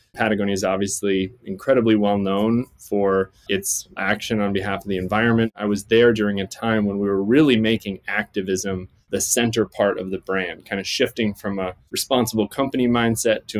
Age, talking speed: 20-39, 180 wpm